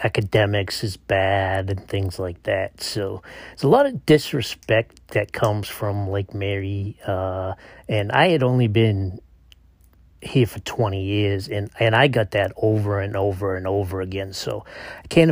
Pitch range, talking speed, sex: 100-115 Hz, 165 wpm, male